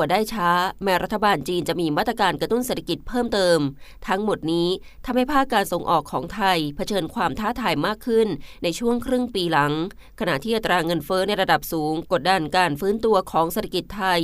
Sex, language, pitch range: female, Thai, 170-225 Hz